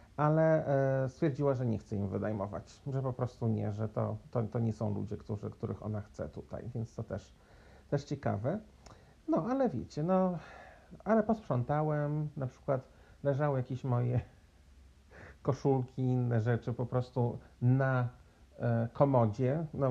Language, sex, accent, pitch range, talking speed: Polish, male, native, 110-145 Hz, 140 wpm